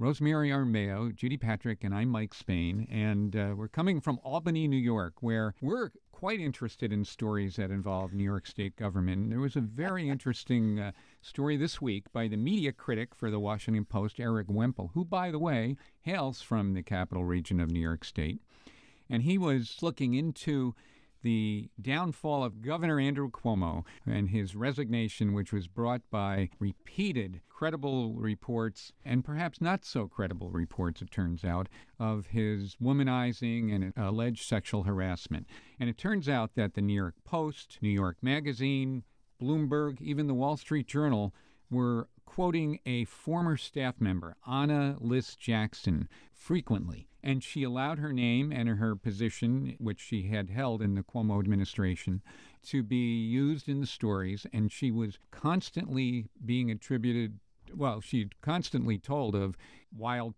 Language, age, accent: English, 50-69, American